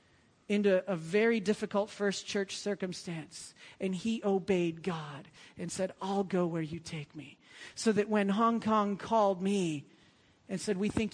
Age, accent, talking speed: 40-59, American, 160 wpm